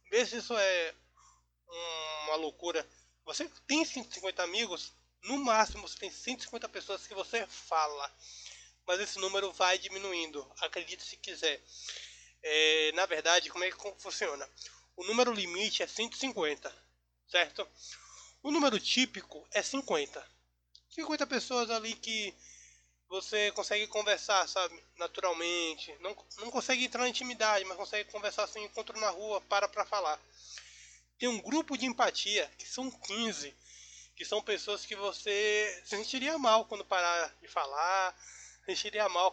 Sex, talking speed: male, 140 wpm